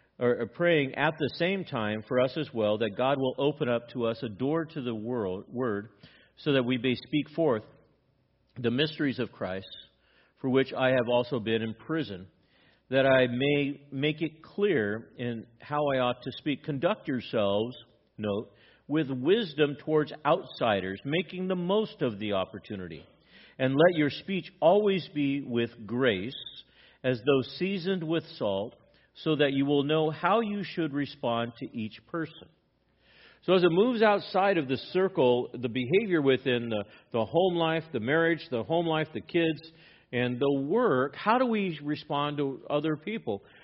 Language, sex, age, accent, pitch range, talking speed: English, male, 50-69, American, 115-160 Hz, 170 wpm